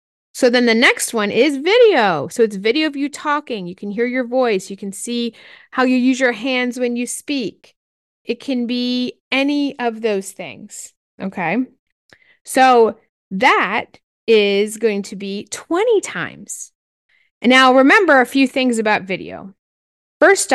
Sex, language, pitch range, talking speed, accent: female, English, 200-260 Hz, 160 wpm, American